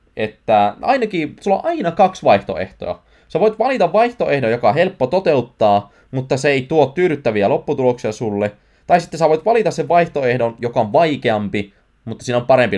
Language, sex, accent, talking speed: Finnish, male, native, 170 wpm